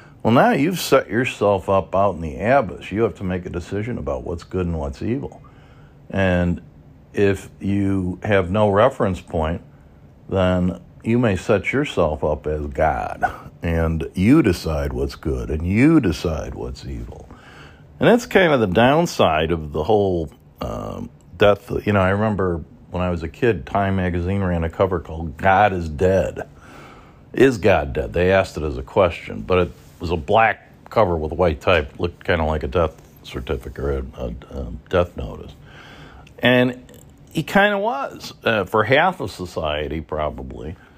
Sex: male